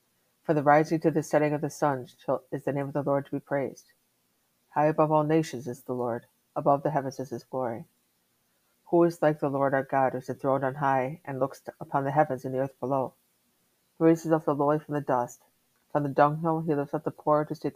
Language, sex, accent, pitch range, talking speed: English, female, American, 125-155 Hz, 235 wpm